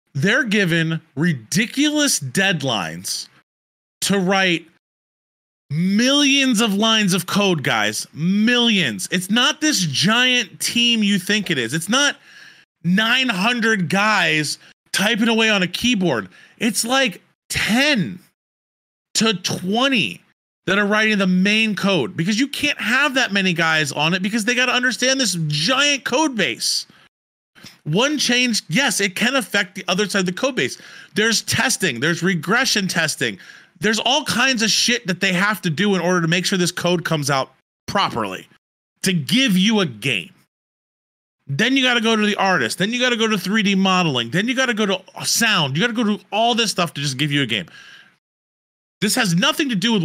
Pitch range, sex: 170-235 Hz, male